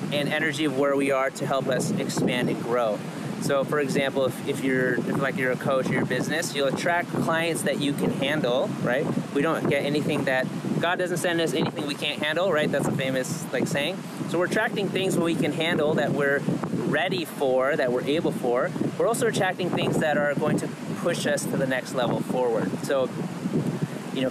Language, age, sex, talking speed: English, 30-49, male, 210 wpm